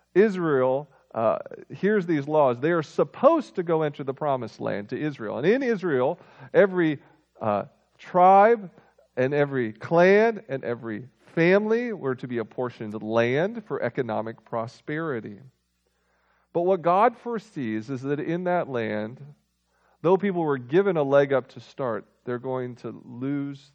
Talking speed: 145 wpm